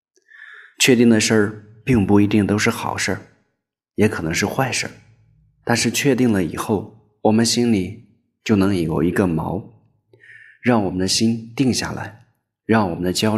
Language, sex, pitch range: Chinese, male, 100-120 Hz